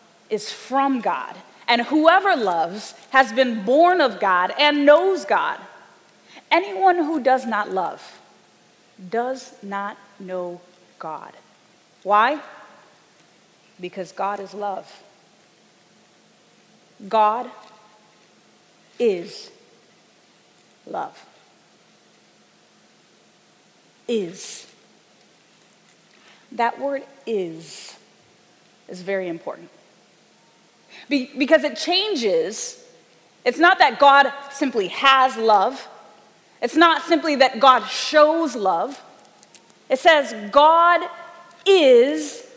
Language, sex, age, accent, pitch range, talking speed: English, female, 30-49, American, 225-325 Hz, 85 wpm